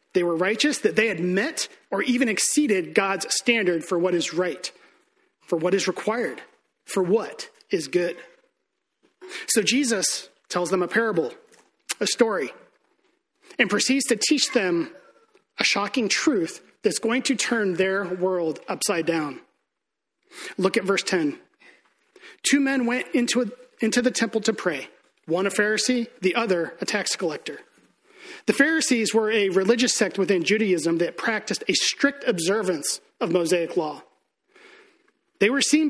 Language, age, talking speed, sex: English, 30-49, 145 wpm, male